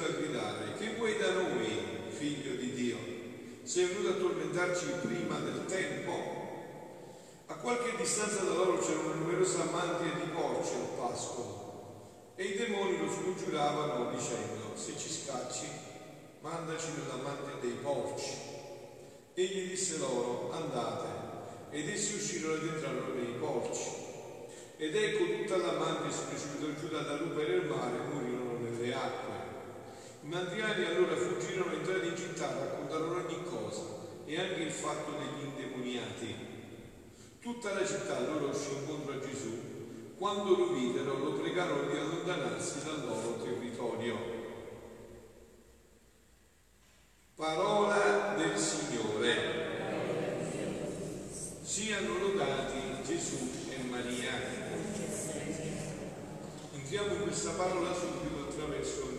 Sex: male